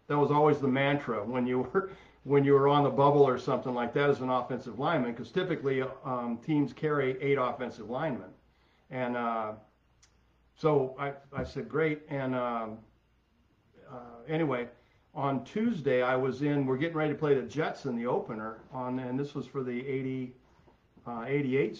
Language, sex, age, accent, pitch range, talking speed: English, male, 50-69, American, 120-145 Hz, 180 wpm